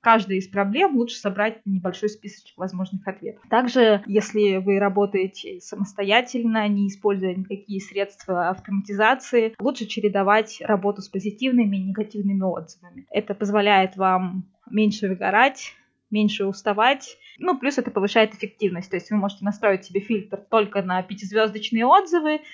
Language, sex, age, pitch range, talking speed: Russian, female, 20-39, 195-220 Hz, 135 wpm